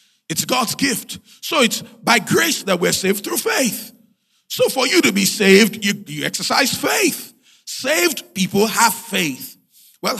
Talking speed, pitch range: 160 wpm, 195-245 Hz